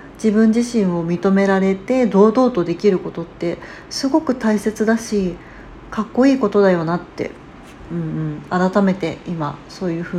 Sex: female